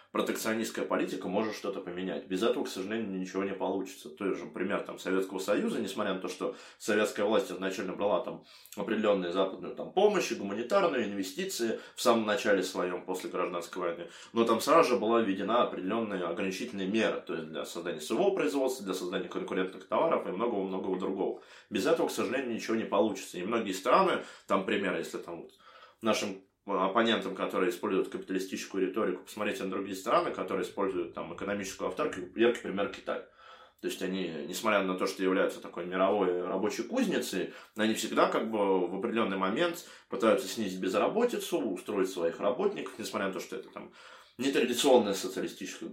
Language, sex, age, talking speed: Russian, male, 20-39, 165 wpm